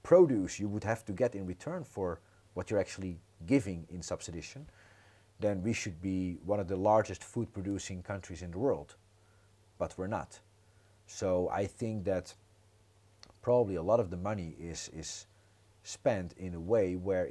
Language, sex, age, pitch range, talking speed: Croatian, male, 40-59, 90-105 Hz, 170 wpm